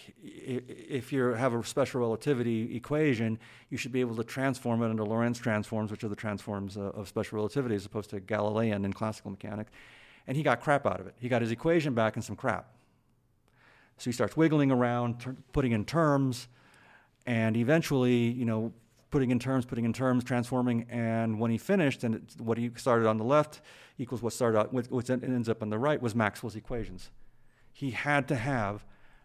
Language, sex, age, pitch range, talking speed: English, male, 40-59, 110-130 Hz, 200 wpm